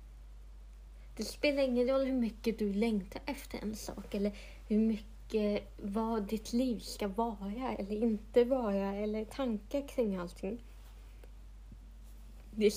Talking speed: 125 wpm